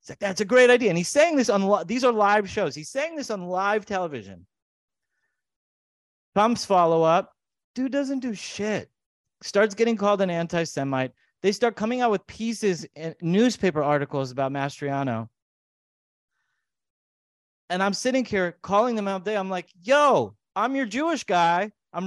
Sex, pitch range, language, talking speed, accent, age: male, 155-215 Hz, English, 170 wpm, American, 30-49